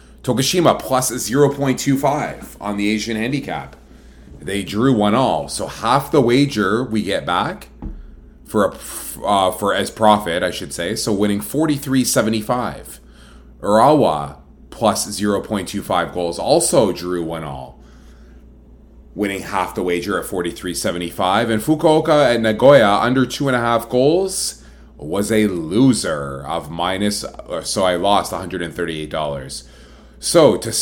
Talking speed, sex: 160 wpm, male